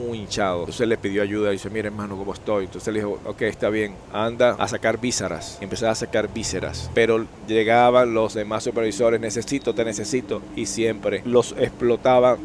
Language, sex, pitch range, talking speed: Spanish, male, 105-120 Hz, 180 wpm